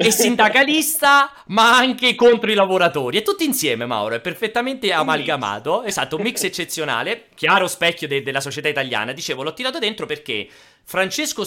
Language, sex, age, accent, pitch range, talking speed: Italian, male, 30-49, native, 140-220 Hz, 155 wpm